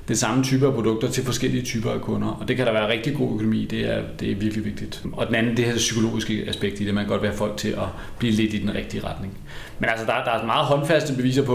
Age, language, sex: 30-49, Danish, male